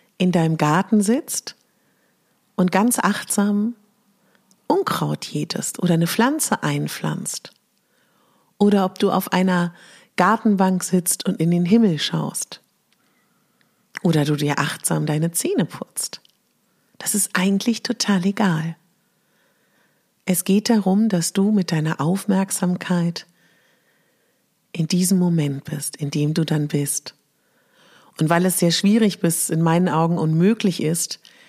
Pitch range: 160-205 Hz